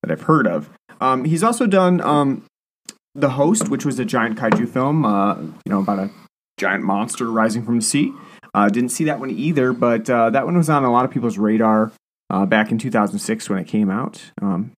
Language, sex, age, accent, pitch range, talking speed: English, male, 30-49, American, 110-160 Hz, 220 wpm